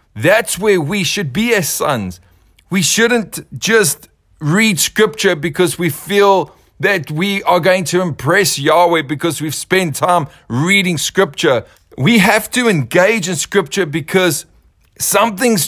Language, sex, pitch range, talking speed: English, male, 140-185 Hz, 140 wpm